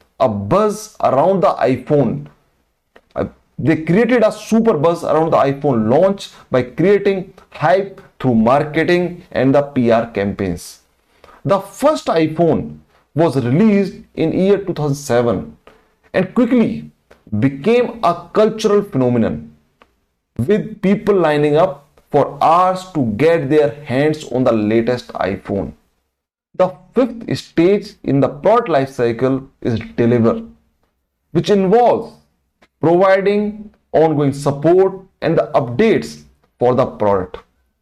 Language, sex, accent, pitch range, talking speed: English, male, Indian, 120-195 Hz, 115 wpm